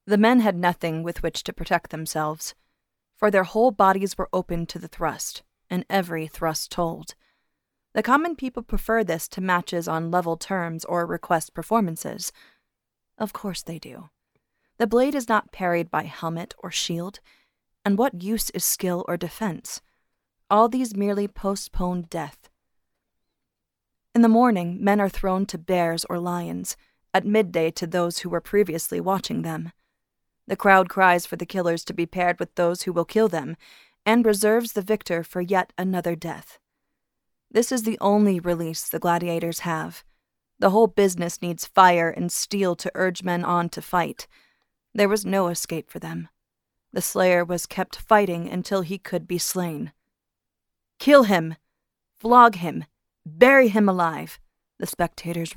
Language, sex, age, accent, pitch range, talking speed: English, female, 30-49, American, 170-205 Hz, 160 wpm